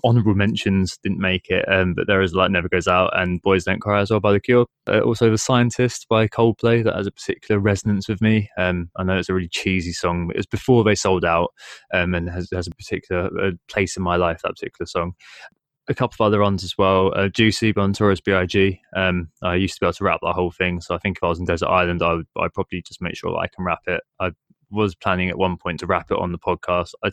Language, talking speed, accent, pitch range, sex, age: English, 275 wpm, British, 85-100 Hz, male, 20-39